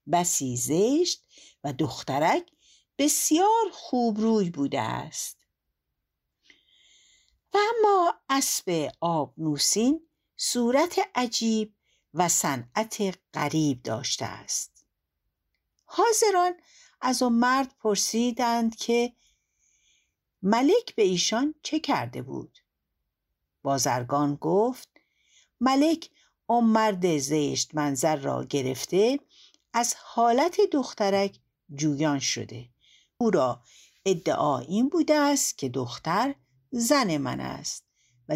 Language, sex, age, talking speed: Persian, female, 60-79, 90 wpm